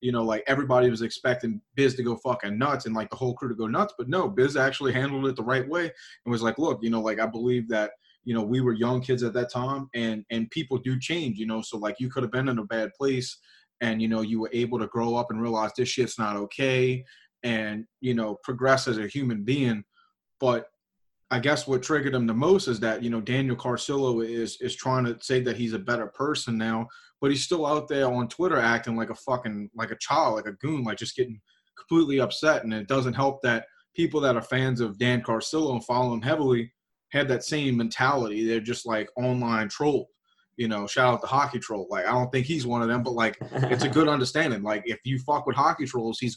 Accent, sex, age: American, male, 30-49